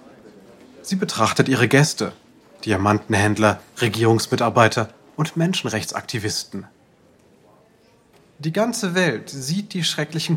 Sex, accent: male, German